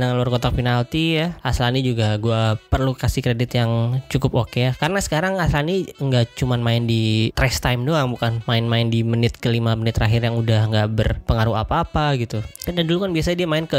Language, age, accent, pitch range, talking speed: Indonesian, 20-39, native, 115-140 Hz, 195 wpm